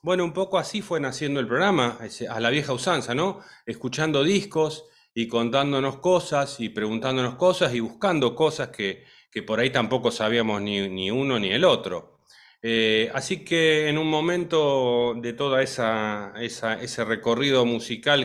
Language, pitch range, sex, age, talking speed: Spanish, 110-140 Hz, male, 30-49, 160 wpm